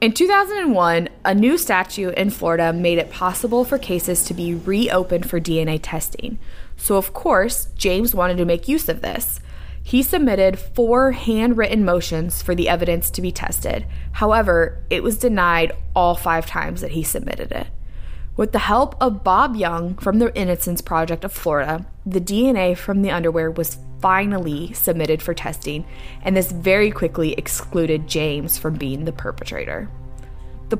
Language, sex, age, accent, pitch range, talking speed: English, female, 20-39, American, 165-215 Hz, 160 wpm